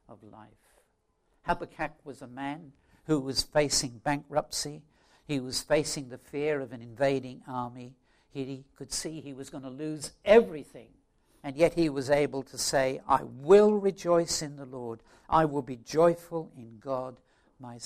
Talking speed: 160 wpm